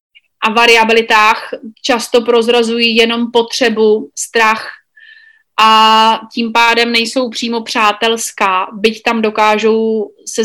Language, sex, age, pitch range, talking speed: Slovak, female, 30-49, 220-240 Hz, 100 wpm